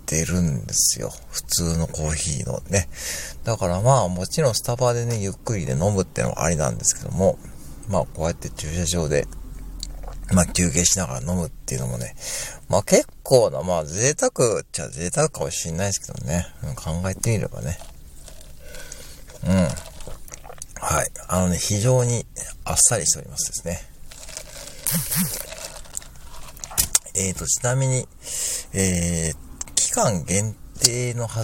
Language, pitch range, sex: Japanese, 75-100 Hz, male